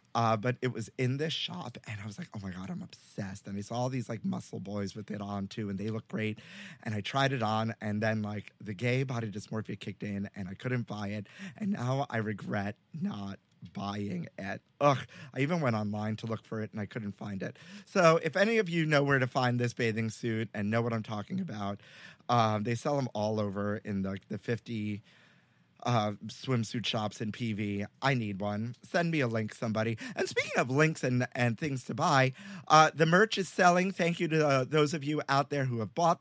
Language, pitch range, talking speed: English, 110-160 Hz, 230 wpm